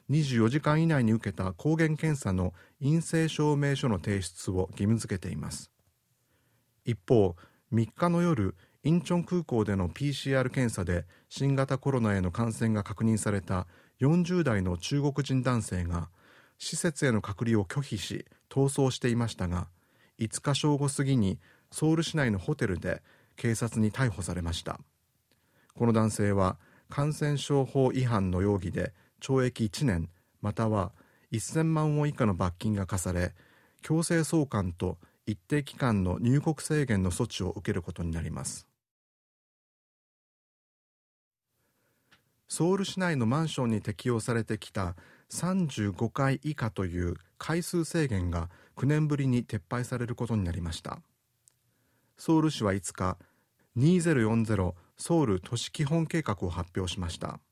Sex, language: male, Japanese